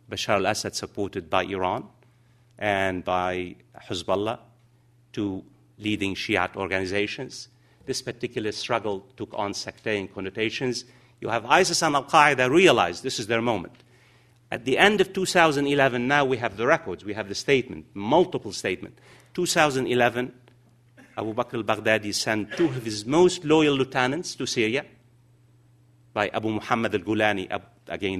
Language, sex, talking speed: English, male, 145 wpm